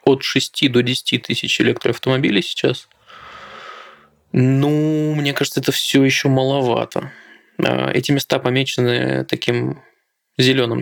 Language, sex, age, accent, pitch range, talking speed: Russian, male, 20-39, native, 115-135 Hz, 105 wpm